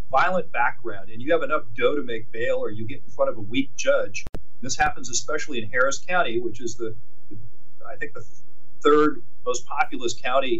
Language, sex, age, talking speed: English, male, 40-59, 200 wpm